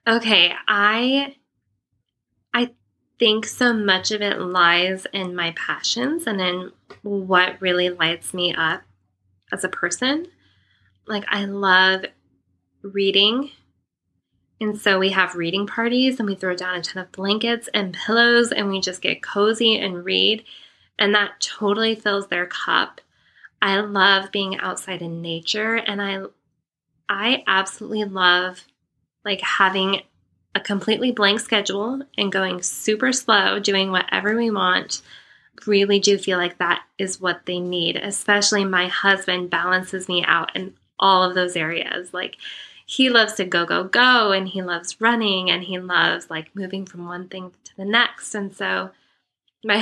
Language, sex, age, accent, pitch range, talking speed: English, female, 20-39, American, 180-210 Hz, 150 wpm